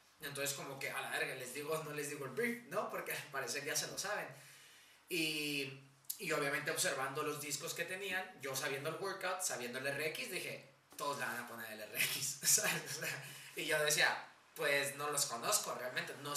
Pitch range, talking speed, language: 130-160 Hz, 200 wpm, Spanish